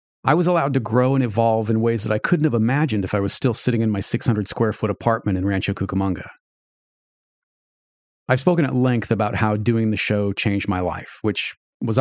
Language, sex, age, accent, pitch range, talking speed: English, male, 40-59, American, 105-135 Hz, 200 wpm